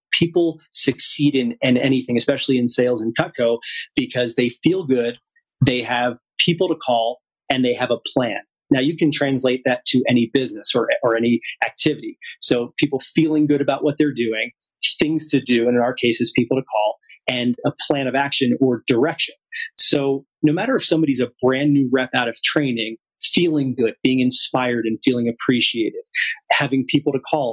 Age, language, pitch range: 30-49, English, 125-150 Hz